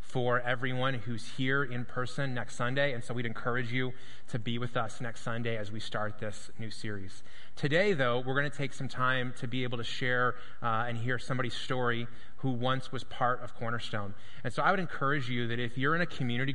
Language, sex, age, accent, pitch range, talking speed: English, male, 20-39, American, 120-135 Hz, 220 wpm